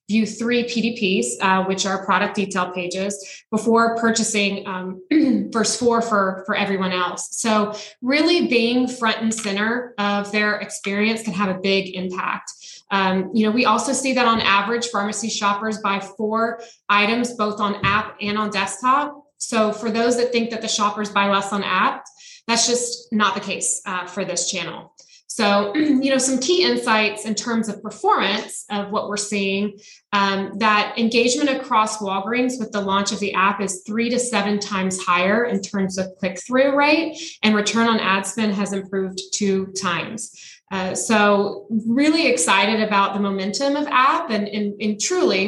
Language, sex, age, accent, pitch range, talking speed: English, female, 20-39, American, 195-230 Hz, 175 wpm